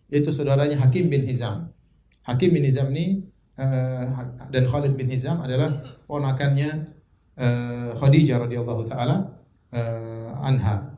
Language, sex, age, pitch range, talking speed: Indonesian, male, 30-49, 135-175 Hz, 120 wpm